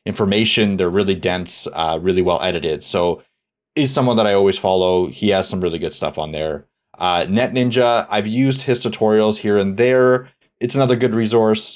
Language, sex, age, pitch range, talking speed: English, male, 30-49, 90-115 Hz, 190 wpm